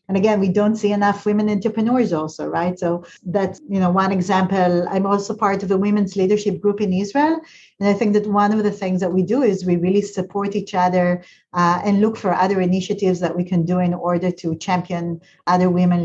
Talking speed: 220 wpm